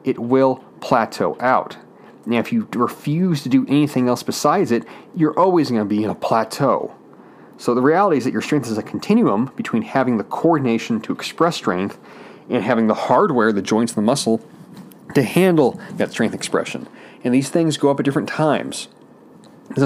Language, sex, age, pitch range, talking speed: English, male, 30-49, 120-160 Hz, 185 wpm